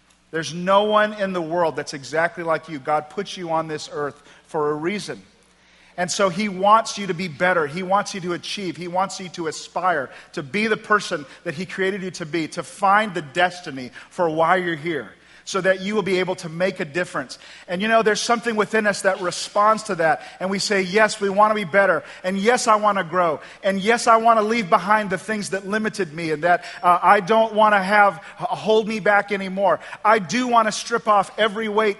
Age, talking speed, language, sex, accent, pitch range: 40-59, 220 wpm, English, male, American, 165-210 Hz